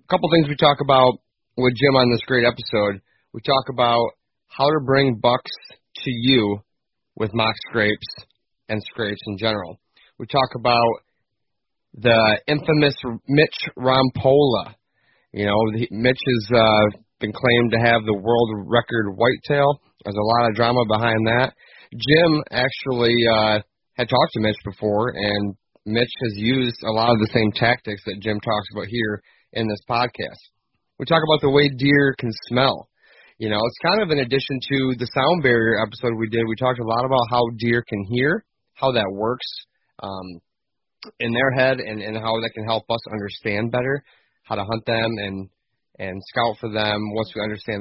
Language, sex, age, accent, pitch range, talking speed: English, male, 30-49, American, 105-130 Hz, 175 wpm